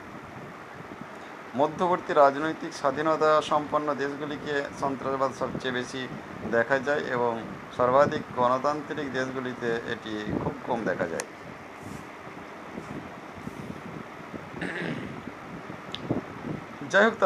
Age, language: 50-69, Bengali